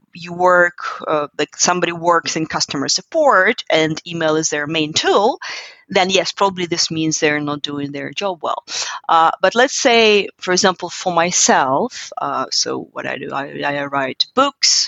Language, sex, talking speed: English, female, 175 wpm